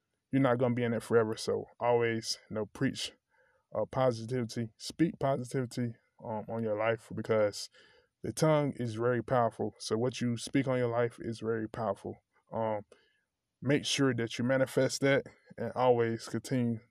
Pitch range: 110-125 Hz